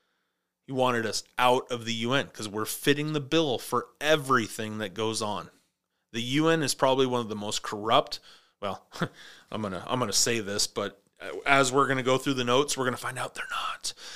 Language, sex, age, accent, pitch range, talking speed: English, male, 30-49, American, 110-140 Hz, 200 wpm